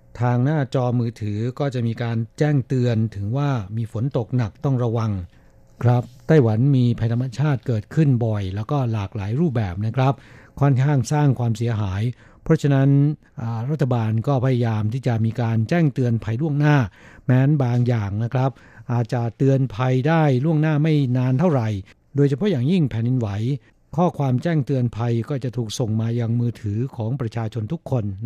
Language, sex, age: Thai, male, 60-79